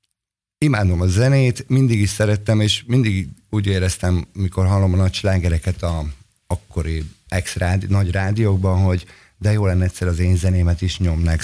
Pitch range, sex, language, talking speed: 90-105 Hz, male, Hungarian, 145 wpm